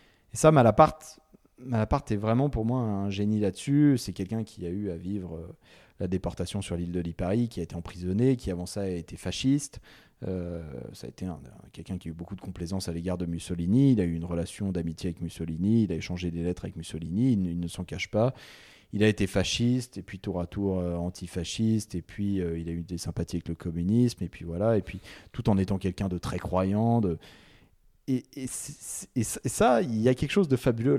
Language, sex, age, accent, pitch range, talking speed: French, male, 30-49, French, 90-125 Hz, 225 wpm